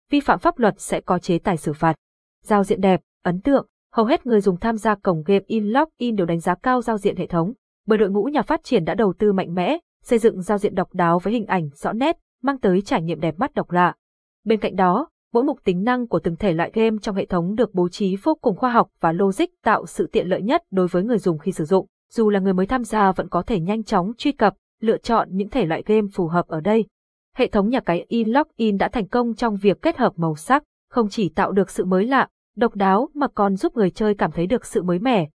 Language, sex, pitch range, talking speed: Vietnamese, female, 185-240 Hz, 265 wpm